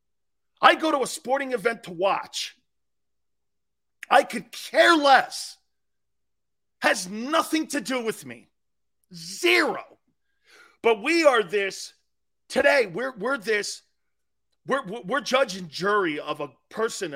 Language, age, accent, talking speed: English, 40-59, American, 120 wpm